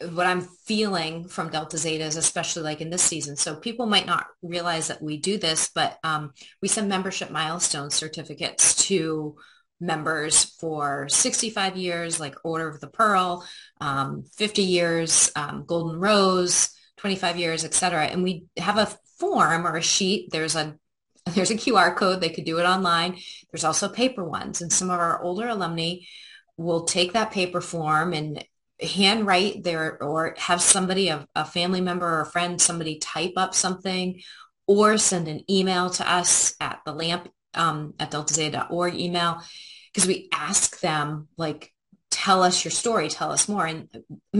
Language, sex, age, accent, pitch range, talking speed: English, female, 30-49, American, 160-190 Hz, 170 wpm